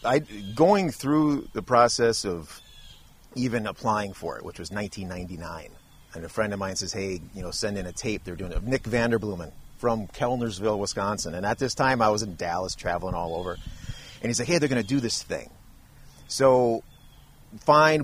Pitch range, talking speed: 95-120 Hz, 190 wpm